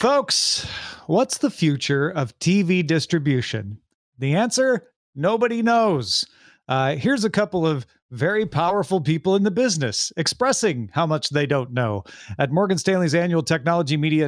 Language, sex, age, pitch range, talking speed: English, male, 40-59, 135-180 Hz, 145 wpm